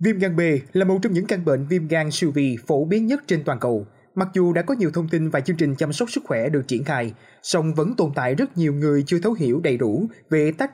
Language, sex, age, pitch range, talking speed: Vietnamese, male, 20-39, 140-190 Hz, 280 wpm